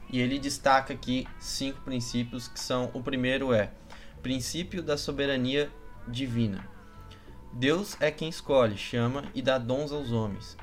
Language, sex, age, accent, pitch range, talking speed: Portuguese, male, 20-39, Brazilian, 115-140 Hz, 140 wpm